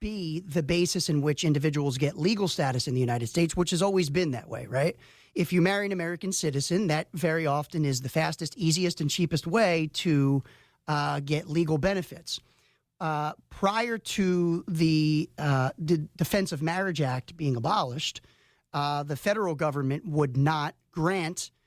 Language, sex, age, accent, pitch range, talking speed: English, male, 40-59, American, 145-175 Hz, 165 wpm